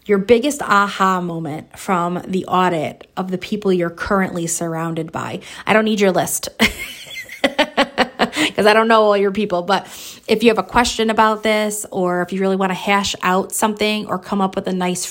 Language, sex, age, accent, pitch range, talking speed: English, female, 20-39, American, 180-225 Hz, 195 wpm